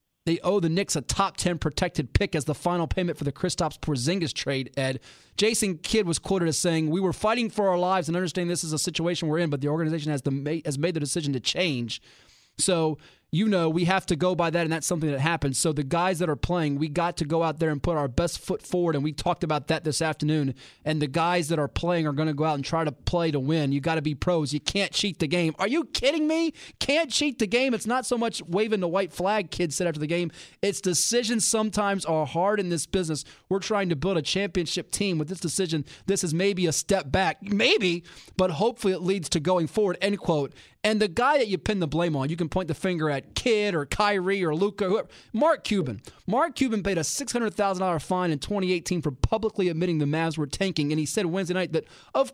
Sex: male